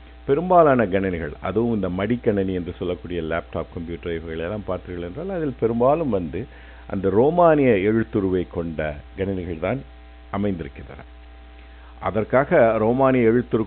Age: 50-69